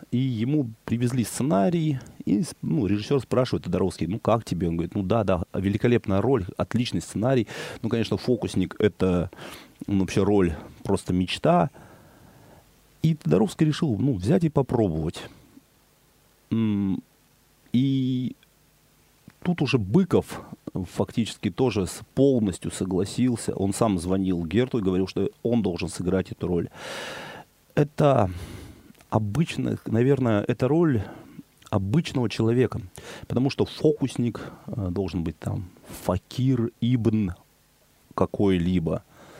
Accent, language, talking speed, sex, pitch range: native, Russian, 110 wpm, male, 95-125 Hz